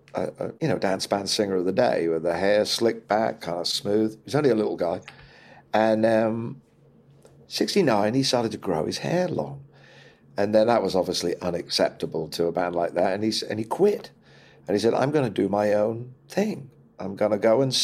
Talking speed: 215 wpm